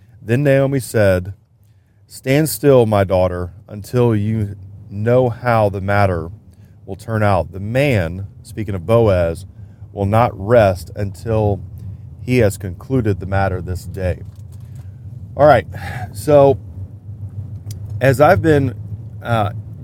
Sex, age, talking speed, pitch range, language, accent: male, 30-49, 120 wpm, 100-120 Hz, English, American